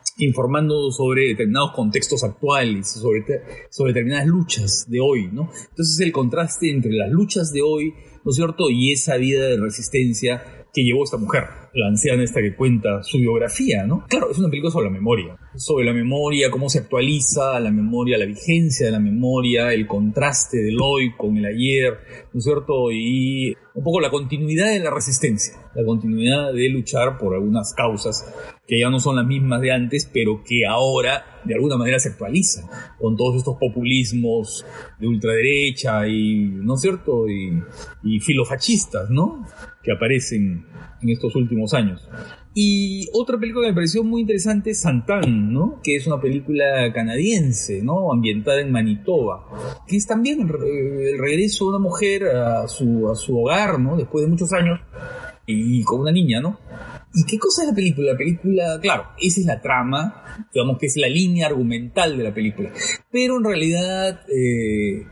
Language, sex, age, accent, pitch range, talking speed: Spanish, male, 40-59, Mexican, 115-165 Hz, 175 wpm